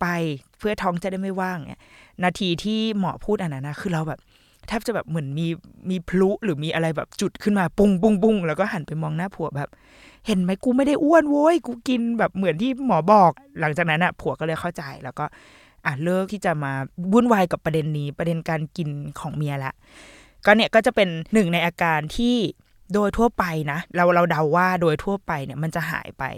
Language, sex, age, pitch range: Thai, female, 20-39, 155-195 Hz